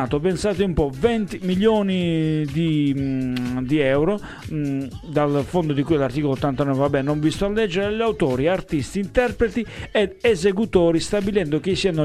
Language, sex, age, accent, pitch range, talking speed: Italian, male, 40-59, native, 140-200 Hz, 150 wpm